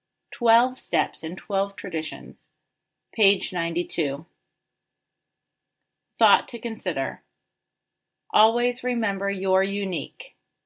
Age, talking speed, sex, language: 30-49, 80 wpm, female, English